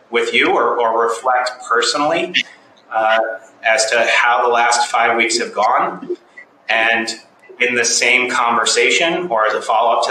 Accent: American